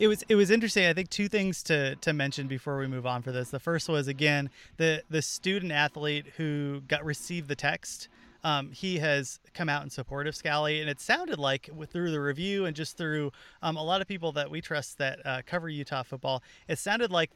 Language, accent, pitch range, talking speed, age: English, American, 135-160 Hz, 230 wpm, 30-49